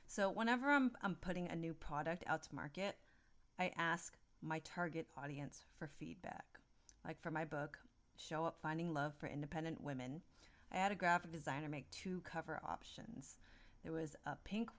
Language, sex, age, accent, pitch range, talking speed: English, female, 30-49, American, 150-195 Hz, 170 wpm